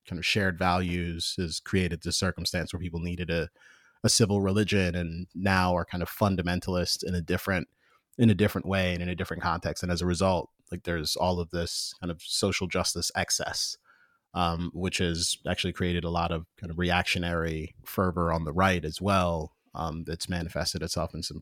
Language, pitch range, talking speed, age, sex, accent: English, 85-95 Hz, 195 wpm, 30-49, male, American